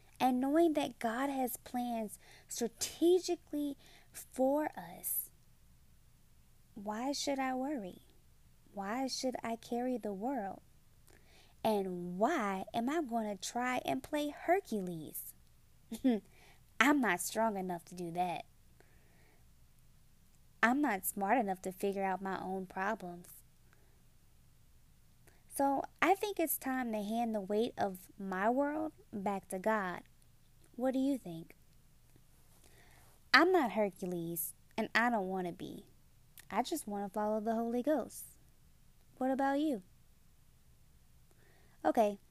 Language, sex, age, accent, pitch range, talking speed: English, female, 20-39, American, 190-265 Hz, 120 wpm